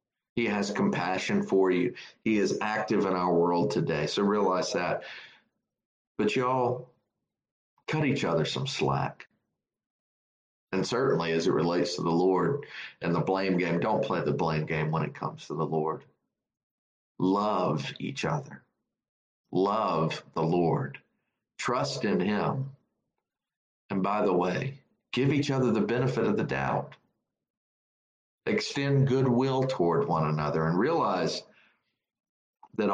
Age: 50-69